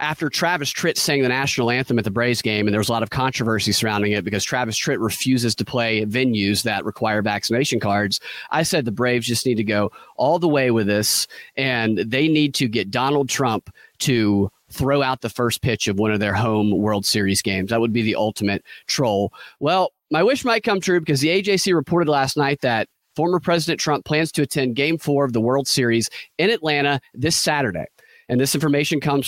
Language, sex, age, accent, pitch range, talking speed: English, male, 30-49, American, 115-155 Hz, 215 wpm